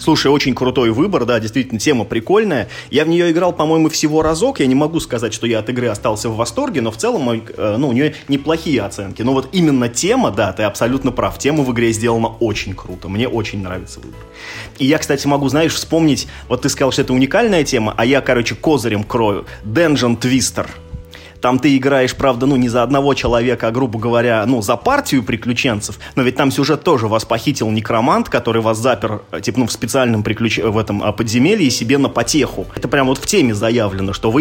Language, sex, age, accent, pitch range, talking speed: Russian, male, 20-39, native, 110-140 Hz, 210 wpm